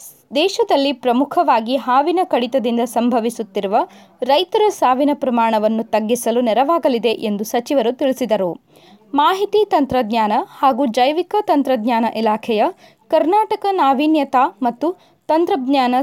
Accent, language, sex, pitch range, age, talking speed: native, Kannada, female, 235-320 Hz, 20-39, 85 wpm